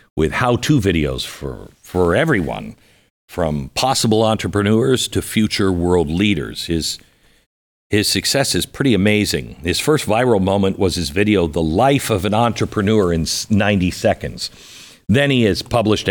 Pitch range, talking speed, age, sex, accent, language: 85-115 Hz, 140 wpm, 50-69, male, American, English